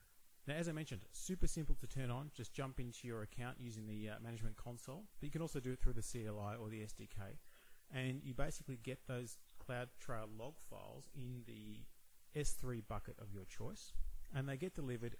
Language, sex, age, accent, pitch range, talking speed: English, male, 30-49, Australian, 105-130 Hz, 195 wpm